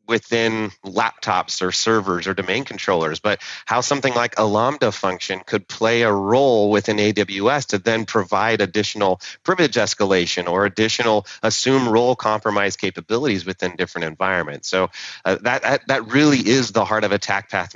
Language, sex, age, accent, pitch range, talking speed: English, male, 30-49, American, 100-120 Hz, 155 wpm